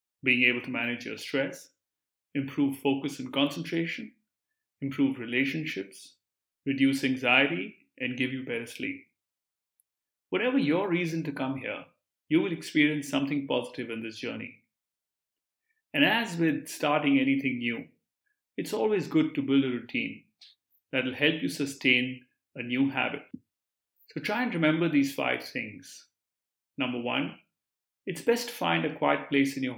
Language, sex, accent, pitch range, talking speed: English, male, Indian, 130-180 Hz, 145 wpm